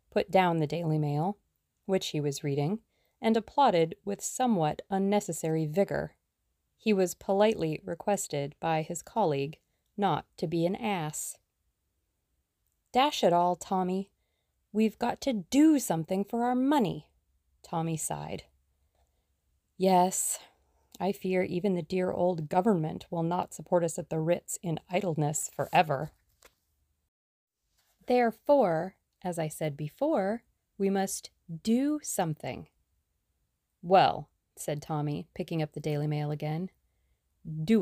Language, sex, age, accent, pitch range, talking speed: English, female, 30-49, American, 150-200 Hz, 125 wpm